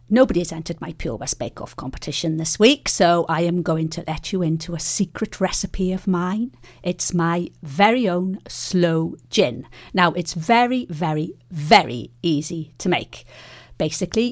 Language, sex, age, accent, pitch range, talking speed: English, female, 50-69, British, 145-195 Hz, 165 wpm